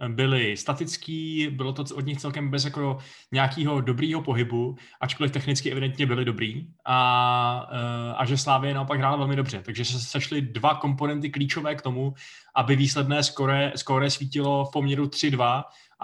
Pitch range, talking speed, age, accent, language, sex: 125-140 Hz, 155 wpm, 20-39, native, Czech, male